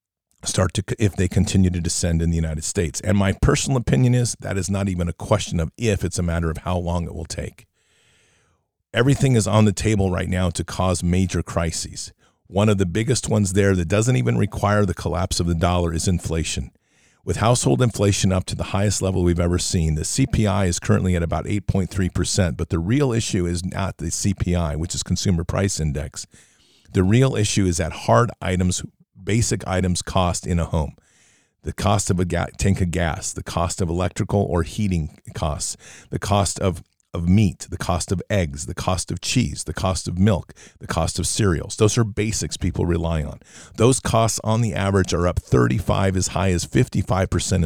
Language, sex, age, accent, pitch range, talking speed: English, male, 50-69, American, 85-105 Hz, 200 wpm